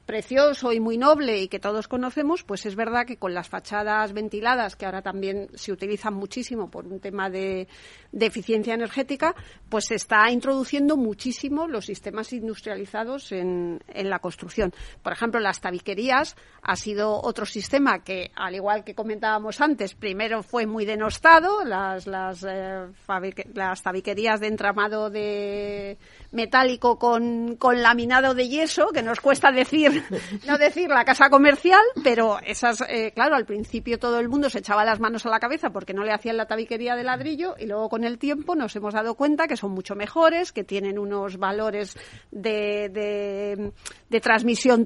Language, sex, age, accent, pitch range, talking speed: Spanish, female, 40-59, Spanish, 205-250 Hz, 170 wpm